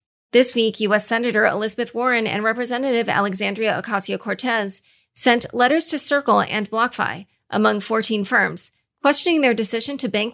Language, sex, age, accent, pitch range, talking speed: English, female, 30-49, American, 205-245 Hz, 140 wpm